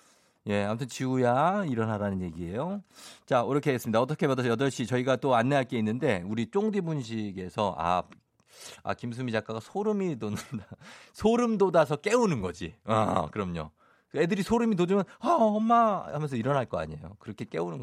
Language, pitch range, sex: Korean, 110-165 Hz, male